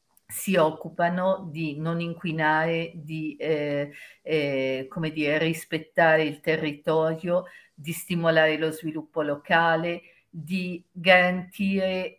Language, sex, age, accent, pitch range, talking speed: Italian, female, 50-69, native, 150-175 Hz, 100 wpm